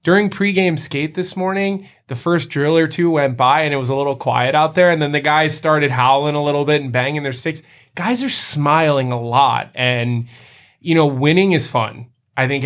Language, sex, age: English, male, 20-39